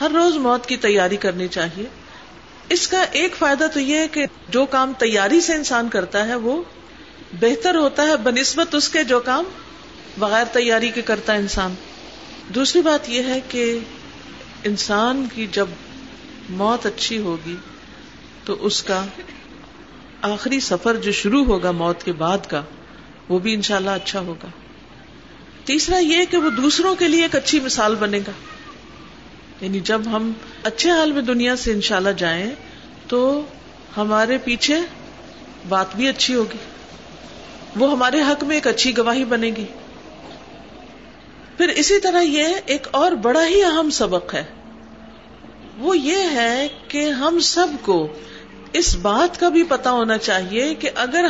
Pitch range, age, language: 215-310 Hz, 50-69, Urdu